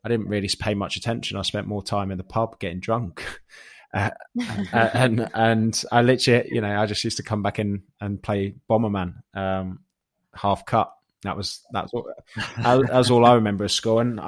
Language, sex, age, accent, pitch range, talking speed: English, male, 20-39, British, 95-115 Hz, 205 wpm